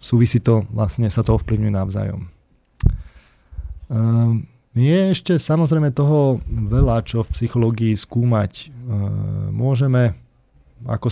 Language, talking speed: Slovak, 95 wpm